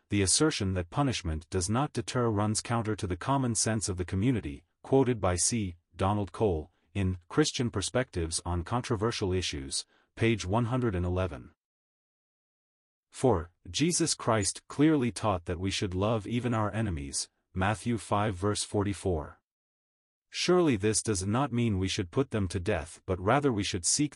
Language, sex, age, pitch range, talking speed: English, male, 30-49, 90-120 Hz, 150 wpm